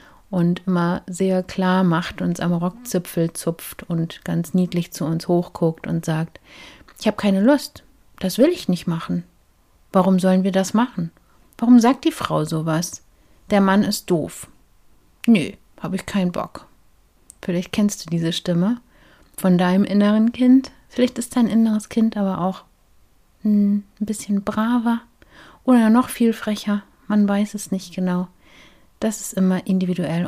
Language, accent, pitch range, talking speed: German, German, 175-210 Hz, 155 wpm